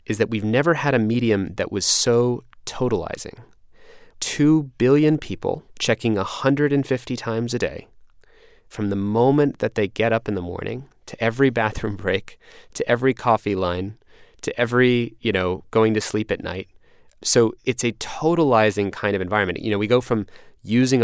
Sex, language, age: male, English, 20-39